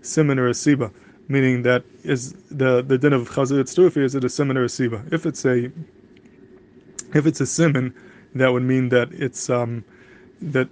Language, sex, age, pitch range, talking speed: English, male, 20-39, 125-150 Hz, 185 wpm